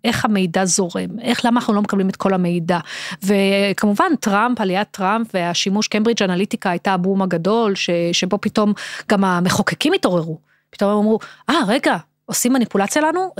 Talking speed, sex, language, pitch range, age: 155 wpm, female, Hebrew, 195-235 Hz, 30-49